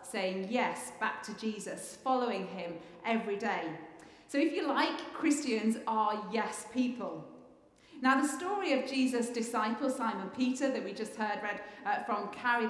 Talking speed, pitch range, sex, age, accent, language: 155 wpm, 215-275 Hz, female, 40-59, British, English